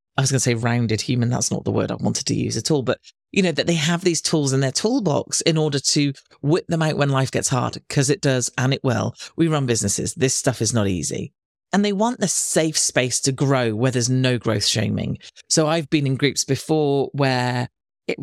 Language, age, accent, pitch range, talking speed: English, 40-59, British, 125-160 Hz, 240 wpm